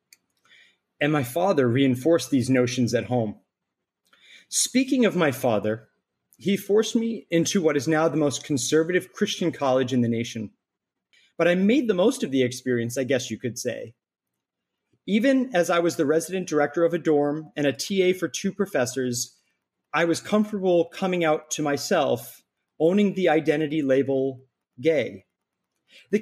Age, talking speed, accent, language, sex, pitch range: 30-49, 160 wpm, American, English, male, 135-200 Hz